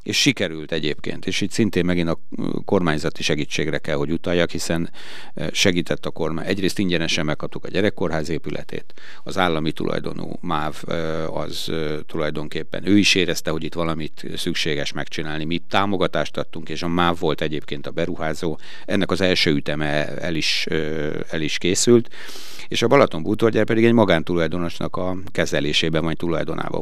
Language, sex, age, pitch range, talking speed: Hungarian, male, 60-79, 75-100 Hz, 150 wpm